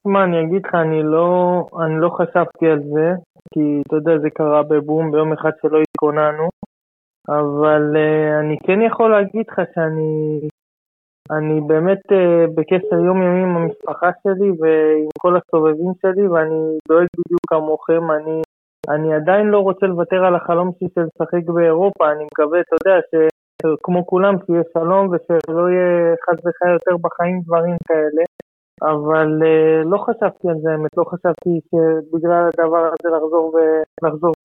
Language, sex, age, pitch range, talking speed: Hebrew, male, 20-39, 155-175 Hz, 150 wpm